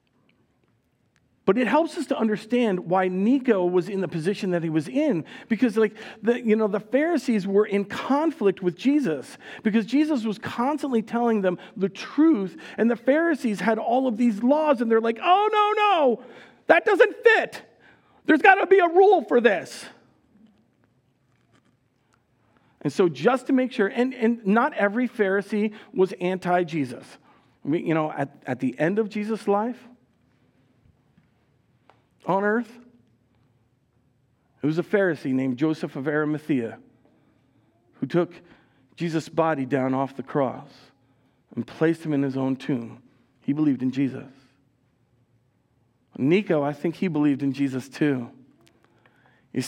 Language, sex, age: English, male, 50-69